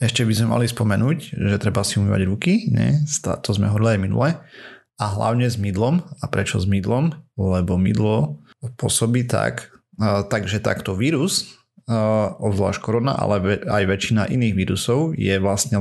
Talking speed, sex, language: 150 wpm, male, Slovak